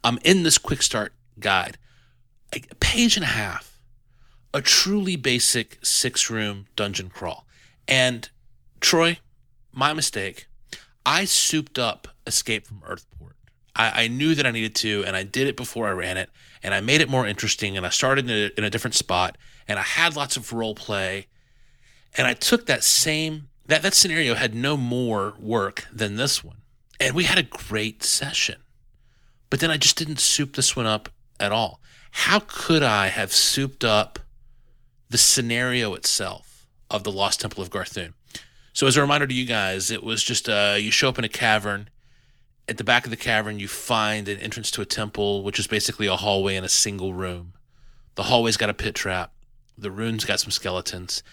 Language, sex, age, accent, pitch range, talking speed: English, male, 30-49, American, 105-130 Hz, 185 wpm